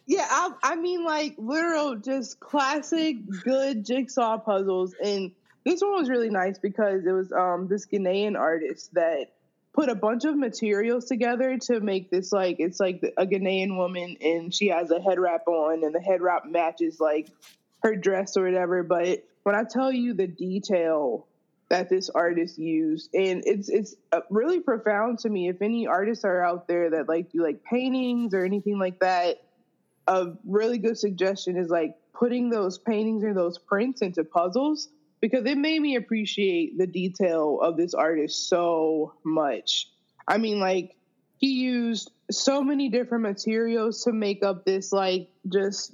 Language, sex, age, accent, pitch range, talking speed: English, female, 20-39, American, 185-250 Hz, 170 wpm